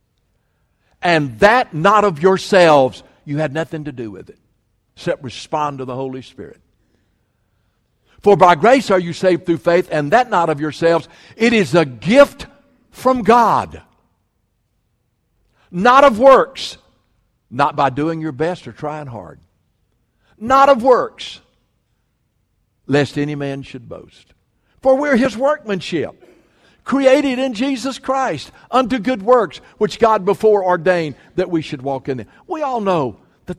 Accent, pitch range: American, 130-215 Hz